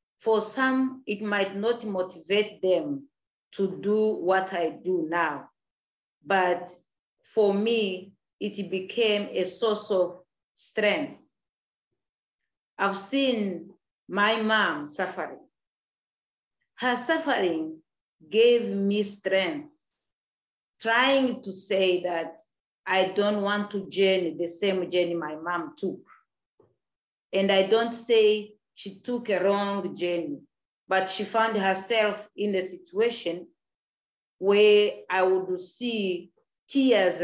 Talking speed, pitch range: 110 wpm, 185-230 Hz